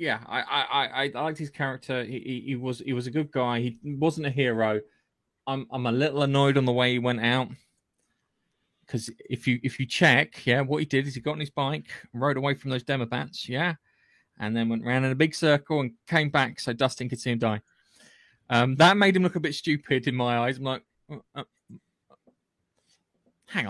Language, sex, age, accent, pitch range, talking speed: English, male, 20-39, British, 120-150 Hz, 210 wpm